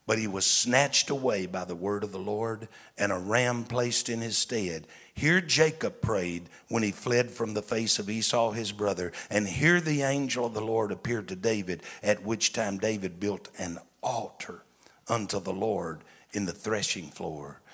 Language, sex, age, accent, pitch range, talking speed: English, male, 60-79, American, 110-145 Hz, 185 wpm